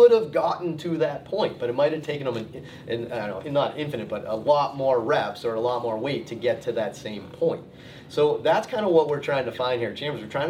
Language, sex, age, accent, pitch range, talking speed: English, male, 30-49, American, 115-165 Hz, 245 wpm